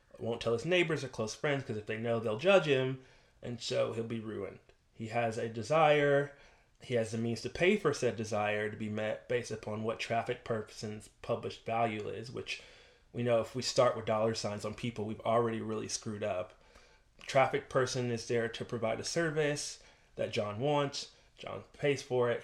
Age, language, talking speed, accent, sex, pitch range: 20-39, English, 200 wpm, American, male, 115-140 Hz